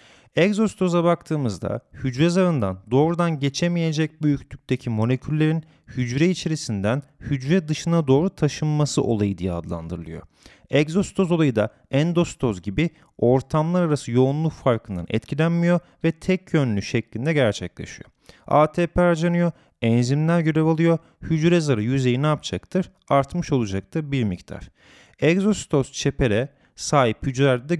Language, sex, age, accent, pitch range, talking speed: Turkish, male, 30-49, native, 120-160 Hz, 110 wpm